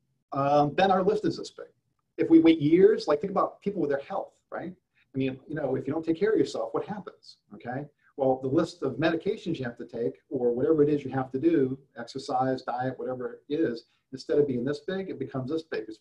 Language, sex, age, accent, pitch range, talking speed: English, male, 50-69, American, 135-175 Hz, 245 wpm